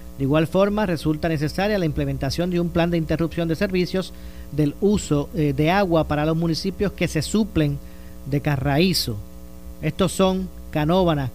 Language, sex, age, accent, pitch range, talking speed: Spanish, male, 40-59, American, 140-175 Hz, 160 wpm